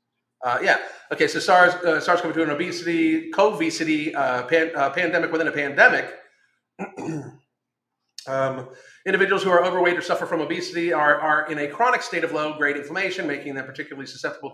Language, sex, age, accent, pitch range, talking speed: English, male, 40-59, American, 180-250 Hz, 170 wpm